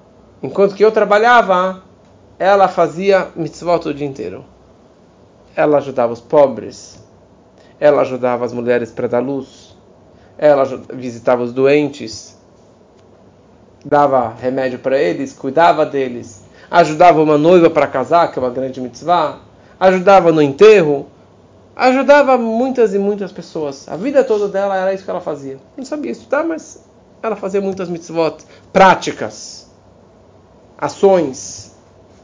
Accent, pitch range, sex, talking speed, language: Brazilian, 135-200 Hz, male, 125 wpm, Portuguese